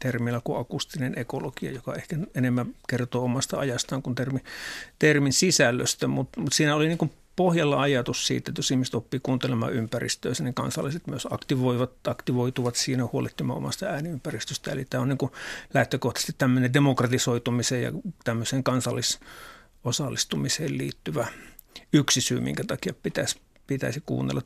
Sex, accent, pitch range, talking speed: male, native, 125-145 Hz, 130 wpm